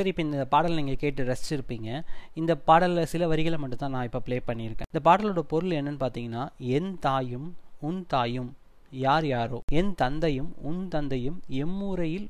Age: 20-39